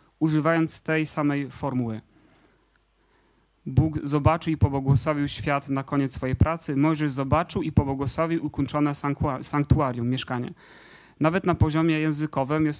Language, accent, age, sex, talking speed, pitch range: Polish, native, 30-49, male, 115 wpm, 135-160 Hz